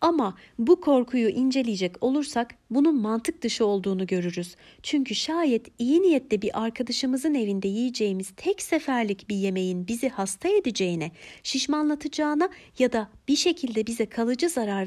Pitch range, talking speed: 195-275 Hz, 135 wpm